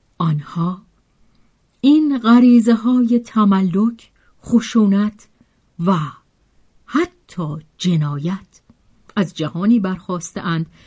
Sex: female